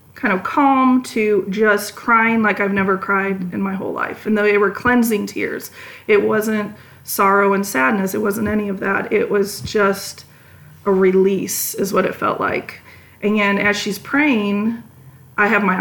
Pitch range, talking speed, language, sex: 200-230 Hz, 175 wpm, English, female